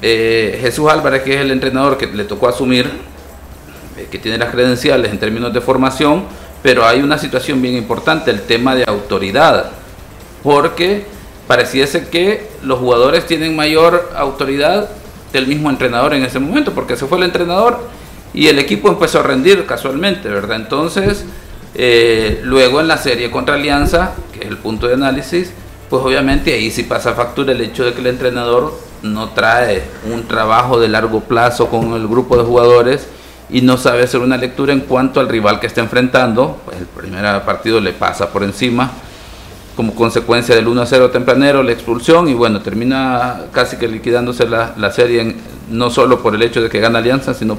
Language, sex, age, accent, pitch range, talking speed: Spanish, male, 50-69, Venezuelan, 110-135 Hz, 185 wpm